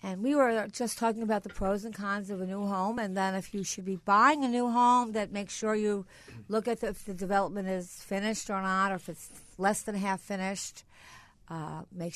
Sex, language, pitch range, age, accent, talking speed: female, English, 170-220 Hz, 50-69, American, 230 wpm